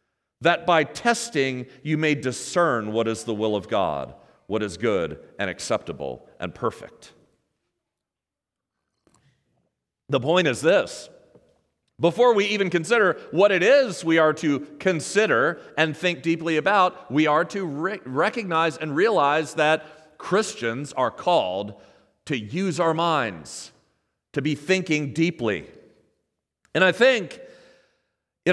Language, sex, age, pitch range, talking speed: English, male, 40-59, 115-165 Hz, 125 wpm